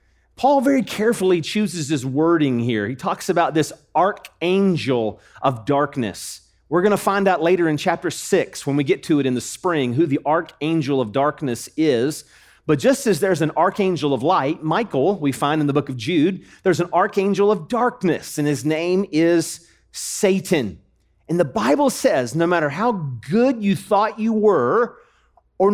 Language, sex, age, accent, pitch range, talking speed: English, male, 40-59, American, 135-200 Hz, 175 wpm